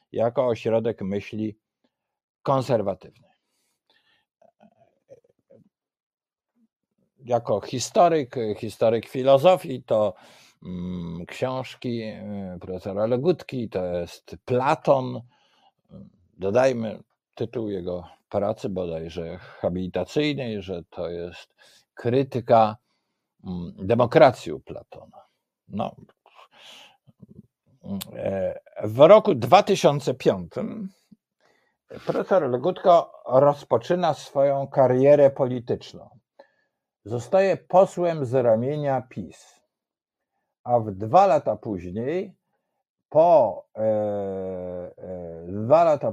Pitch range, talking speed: 105-150 Hz, 70 wpm